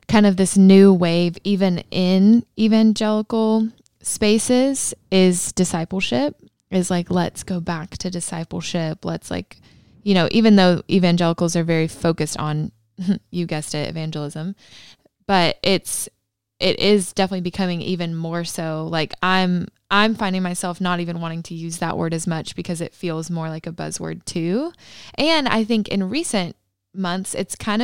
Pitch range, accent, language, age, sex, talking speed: 165-200 Hz, American, English, 20-39, female, 155 wpm